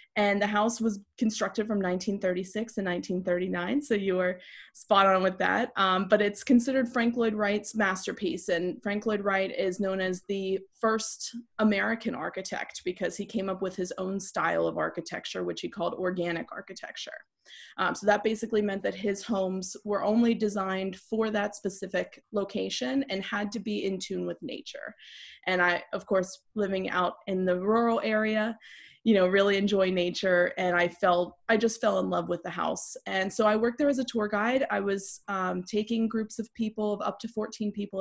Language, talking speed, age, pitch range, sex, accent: French, 190 wpm, 20-39, 190-220 Hz, female, American